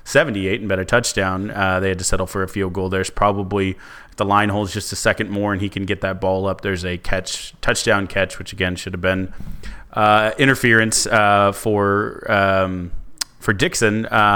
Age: 30-49